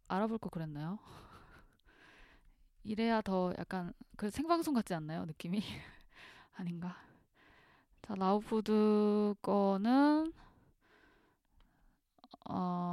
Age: 20-39